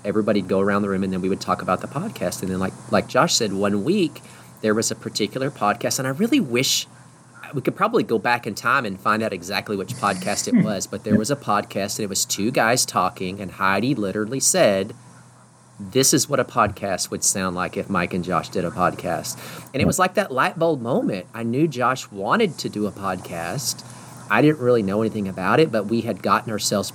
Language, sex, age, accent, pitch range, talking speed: English, male, 40-59, American, 100-130 Hz, 230 wpm